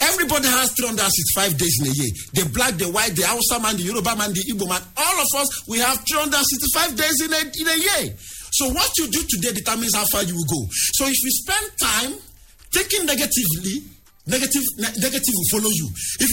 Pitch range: 185-280 Hz